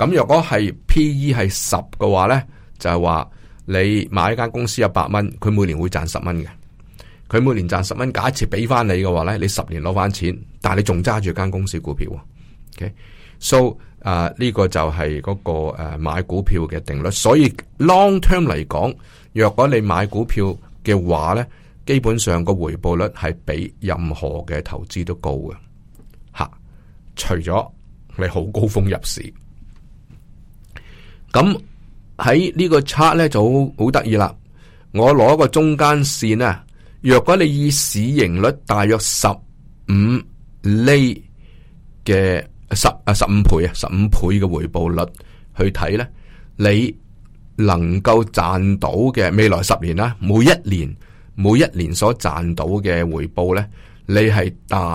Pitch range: 90-115 Hz